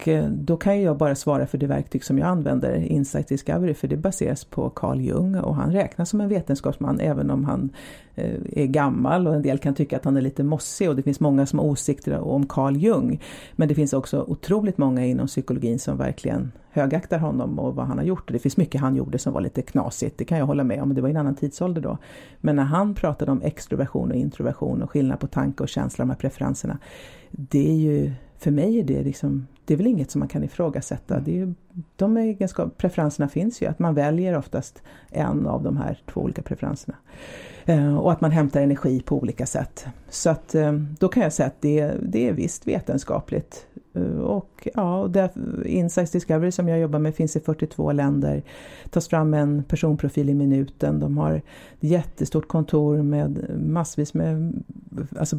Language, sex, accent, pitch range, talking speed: Swedish, female, native, 140-170 Hz, 210 wpm